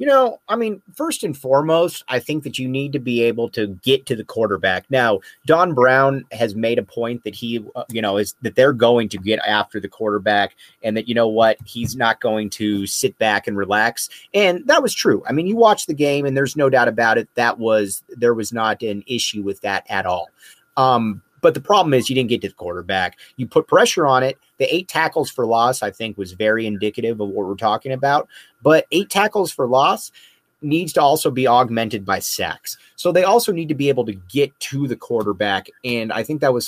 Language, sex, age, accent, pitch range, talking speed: English, male, 30-49, American, 110-155 Hz, 230 wpm